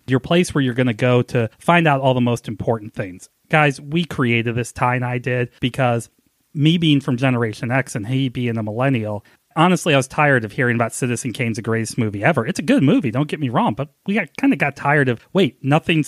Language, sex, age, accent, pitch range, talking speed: English, male, 30-49, American, 120-160 Hz, 245 wpm